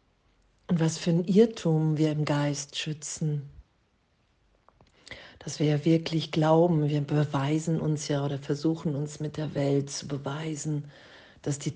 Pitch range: 145-160 Hz